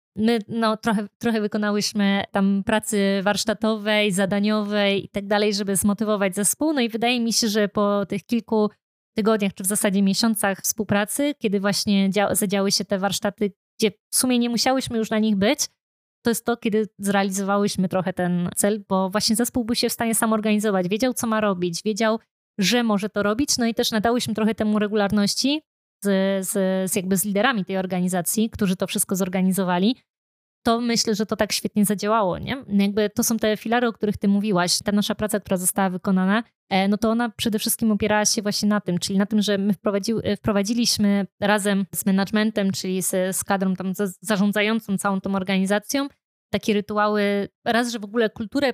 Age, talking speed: 20-39, 180 wpm